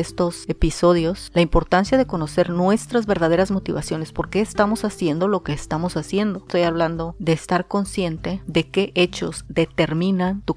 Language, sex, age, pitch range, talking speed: Spanish, female, 30-49, 165-205 Hz, 155 wpm